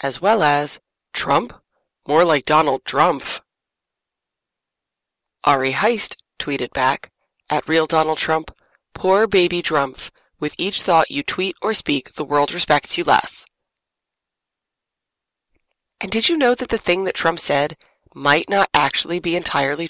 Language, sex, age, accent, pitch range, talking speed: English, female, 20-39, American, 150-185 Hz, 140 wpm